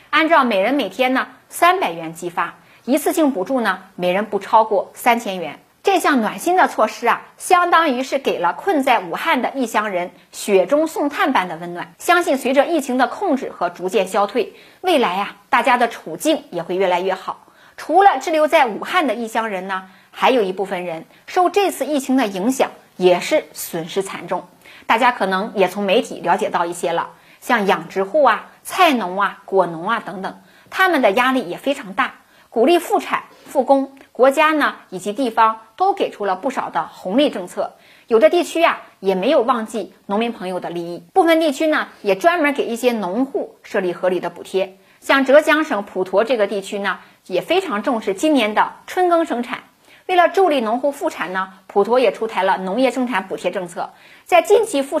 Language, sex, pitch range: Chinese, female, 190-310 Hz